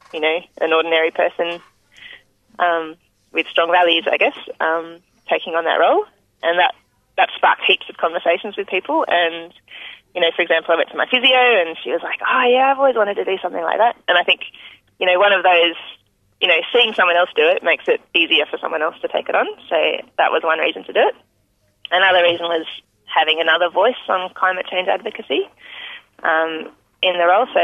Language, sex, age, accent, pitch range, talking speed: English, female, 20-39, Australian, 165-245 Hz, 210 wpm